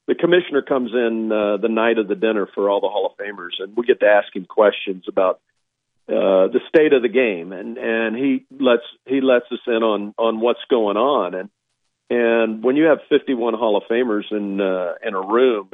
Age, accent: 50-69, American